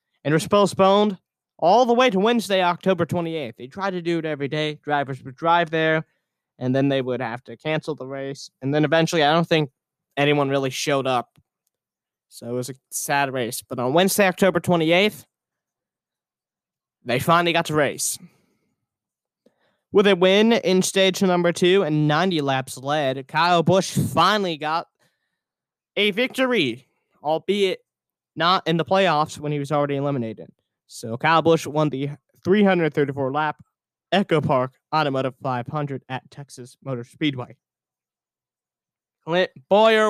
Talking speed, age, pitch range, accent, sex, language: 150 wpm, 20-39, 135-180 Hz, American, male, English